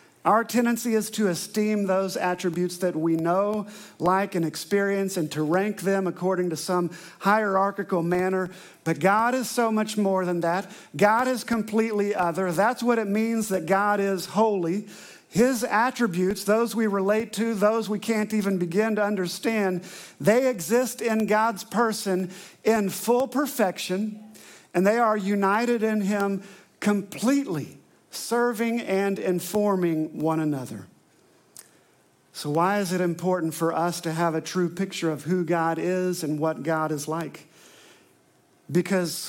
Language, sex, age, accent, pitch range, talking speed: English, male, 50-69, American, 180-220 Hz, 150 wpm